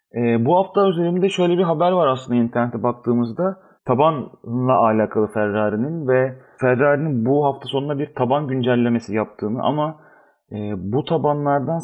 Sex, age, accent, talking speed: male, 40-59, native, 135 wpm